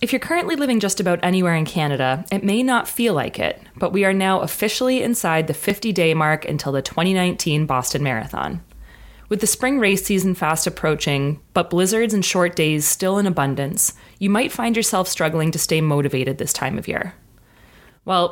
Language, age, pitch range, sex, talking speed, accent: English, 30-49, 155-205 Hz, female, 185 wpm, American